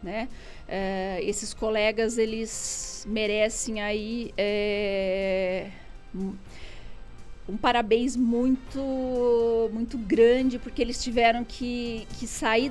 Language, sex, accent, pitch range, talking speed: Portuguese, female, Brazilian, 215-255 Hz, 85 wpm